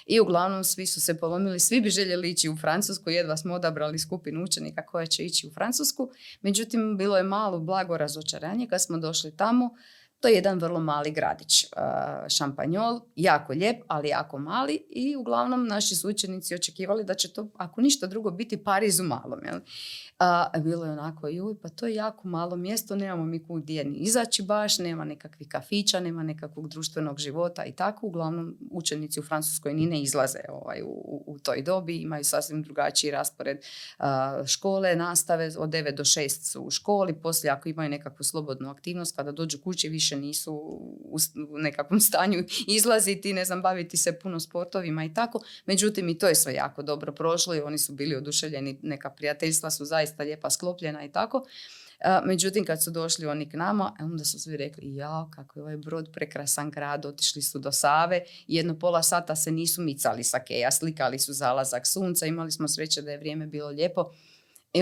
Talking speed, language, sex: 180 wpm, Croatian, female